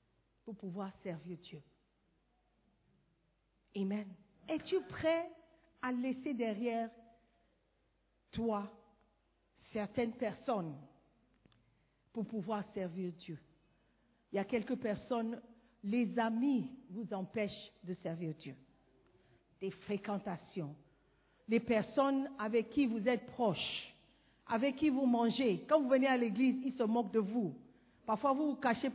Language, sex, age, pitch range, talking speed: French, female, 50-69, 190-255 Hz, 115 wpm